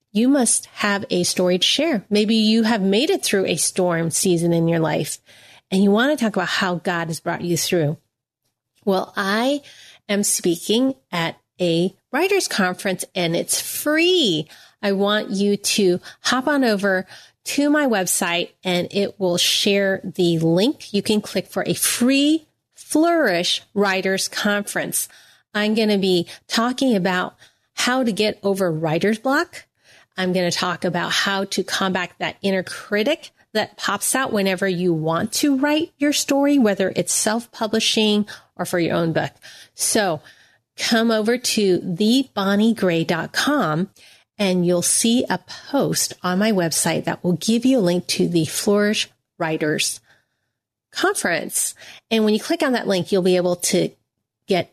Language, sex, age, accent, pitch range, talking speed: English, female, 30-49, American, 175-225 Hz, 160 wpm